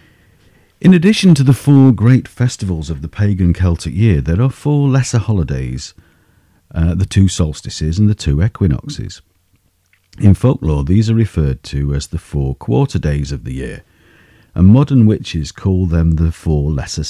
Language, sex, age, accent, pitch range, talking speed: English, male, 50-69, British, 75-105 Hz, 165 wpm